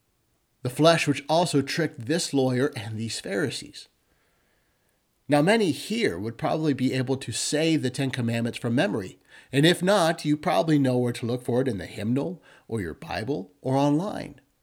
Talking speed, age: 175 wpm, 50-69